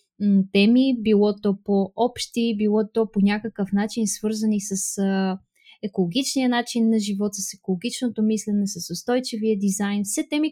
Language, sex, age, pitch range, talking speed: Bulgarian, female, 20-39, 200-240 Hz, 135 wpm